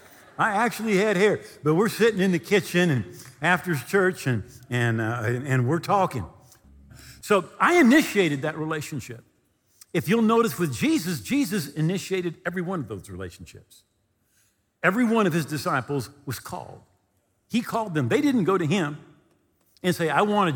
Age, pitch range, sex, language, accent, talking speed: 50-69, 125-185 Hz, male, English, American, 165 wpm